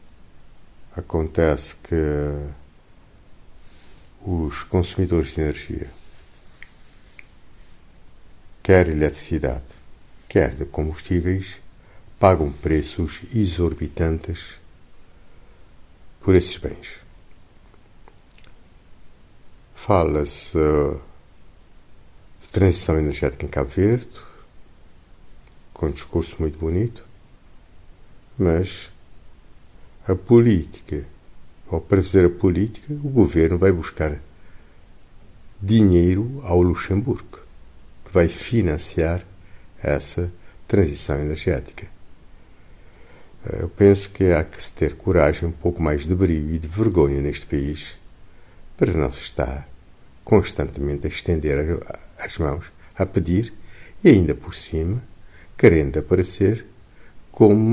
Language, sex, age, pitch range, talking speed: Portuguese, male, 50-69, 80-100 Hz, 90 wpm